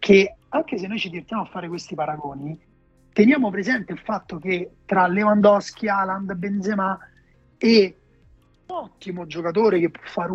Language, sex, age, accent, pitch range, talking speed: Italian, male, 30-49, native, 165-205 Hz, 150 wpm